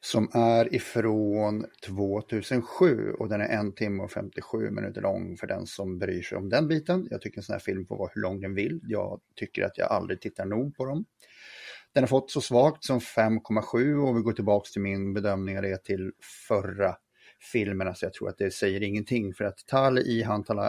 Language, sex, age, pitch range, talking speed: Swedish, male, 30-49, 100-130 Hz, 215 wpm